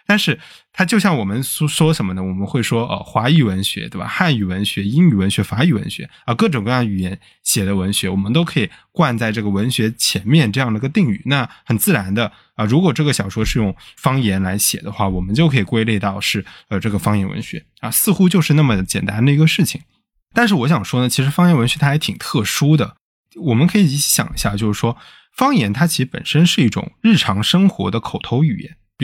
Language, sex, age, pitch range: Chinese, male, 20-39, 105-155 Hz